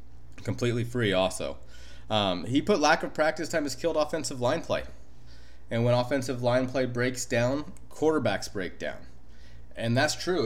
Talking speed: 160 wpm